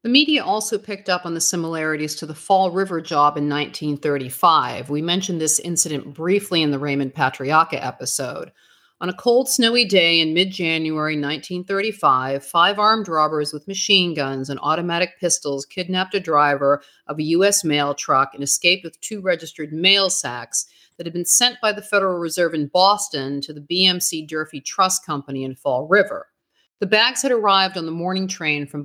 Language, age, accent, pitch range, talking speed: English, 50-69, American, 155-200 Hz, 175 wpm